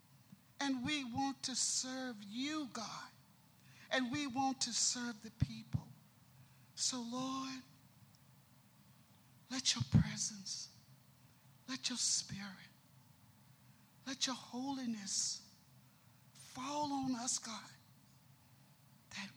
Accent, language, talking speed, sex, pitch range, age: American, English, 95 wpm, male, 210-260 Hz, 50-69